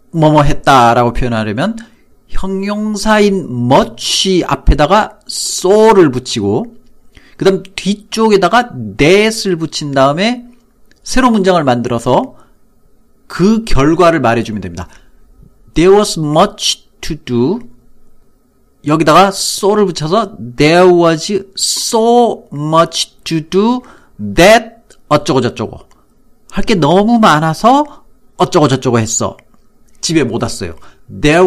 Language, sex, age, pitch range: Korean, male, 40-59, 125-200 Hz